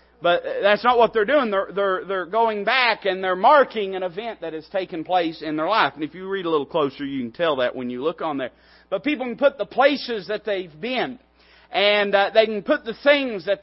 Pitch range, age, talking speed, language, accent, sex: 175-245 Hz, 40-59, 240 wpm, English, American, male